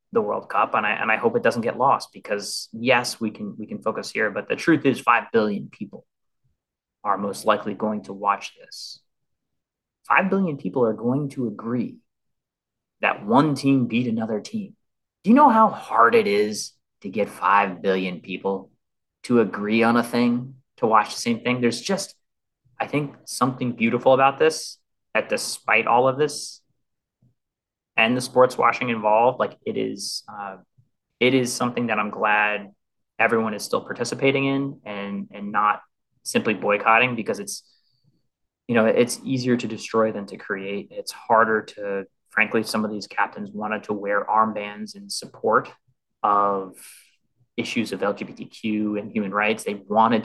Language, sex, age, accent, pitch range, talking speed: English, male, 30-49, American, 105-135 Hz, 170 wpm